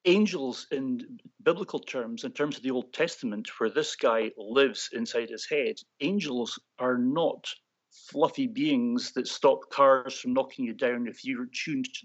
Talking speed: 165 wpm